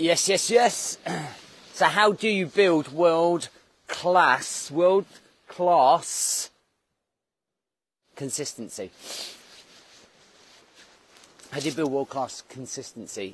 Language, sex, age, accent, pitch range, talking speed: English, male, 40-59, British, 125-165 Hz, 90 wpm